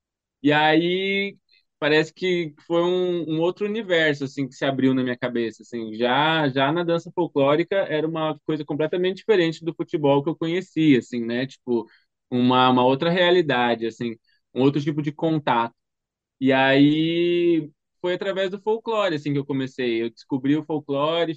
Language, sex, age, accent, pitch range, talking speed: Portuguese, male, 20-39, Brazilian, 130-160 Hz, 150 wpm